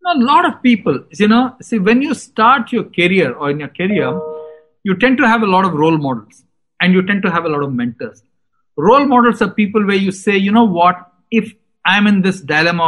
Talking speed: 235 wpm